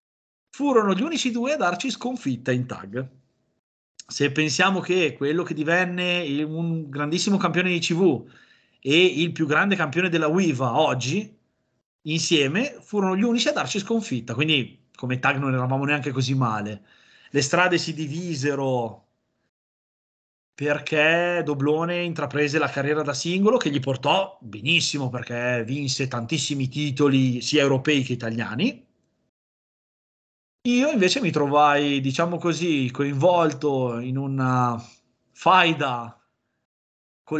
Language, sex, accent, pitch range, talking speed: Italian, male, native, 130-170 Hz, 125 wpm